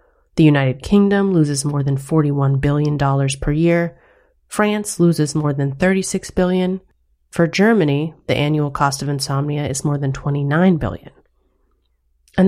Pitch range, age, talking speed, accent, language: 145-195 Hz, 30-49, 145 wpm, American, English